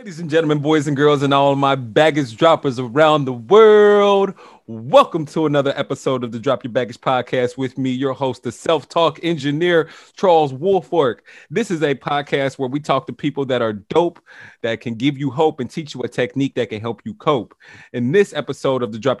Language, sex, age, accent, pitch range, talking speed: English, male, 30-49, American, 130-165 Hz, 205 wpm